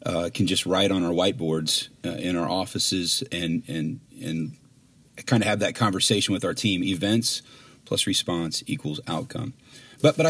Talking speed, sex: 170 wpm, male